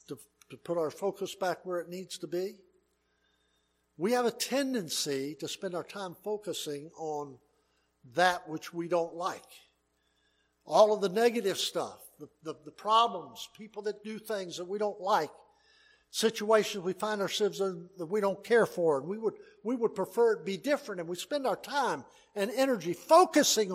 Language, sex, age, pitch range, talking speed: English, male, 60-79, 150-215 Hz, 175 wpm